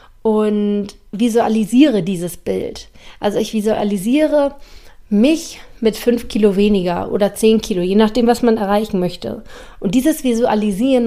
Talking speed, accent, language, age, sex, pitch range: 130 wpm, German, German, 30-49, female, 205-240 Hz